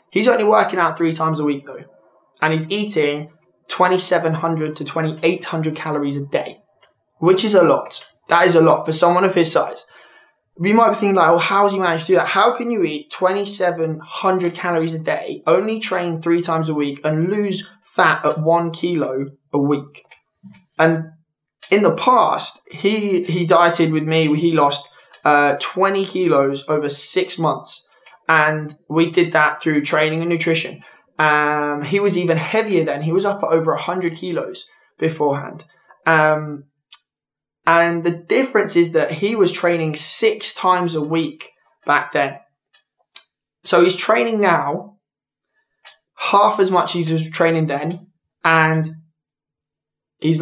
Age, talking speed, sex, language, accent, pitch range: 20-39, 160 wpm, male, English, British, 150-185 Hz